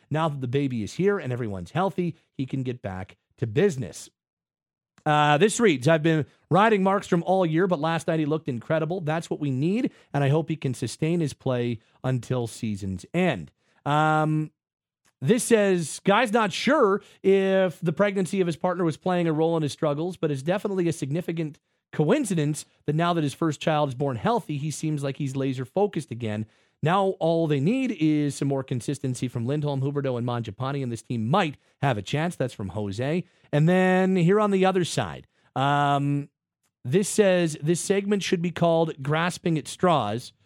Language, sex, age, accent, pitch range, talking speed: English, male, 30-49, American, 130-175 Hz, 185 wpm